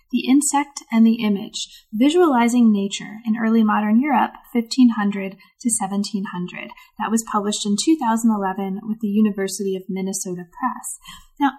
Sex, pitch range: female, 205-245 Hz